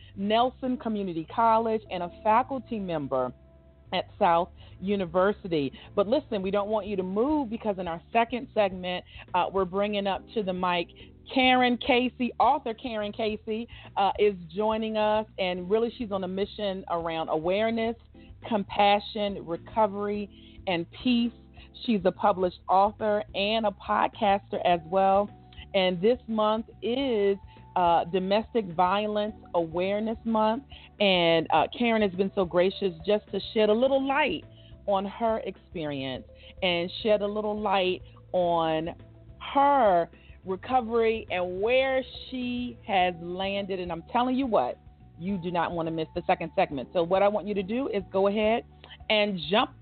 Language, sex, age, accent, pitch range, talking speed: English, female, 40-59, American, 180-230 Hz, 150 wpm